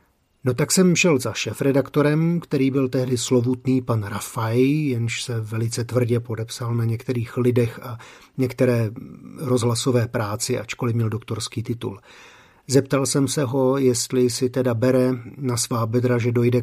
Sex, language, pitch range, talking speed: male, Slovak, 115-135 Hz, 150 wpm